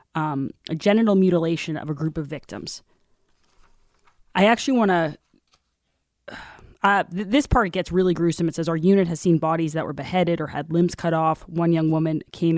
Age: 20-39